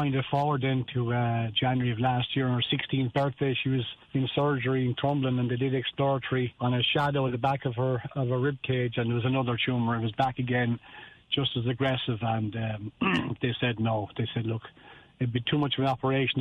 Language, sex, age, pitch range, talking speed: English, male, 40-59, 125-145 Hz, 225 wpm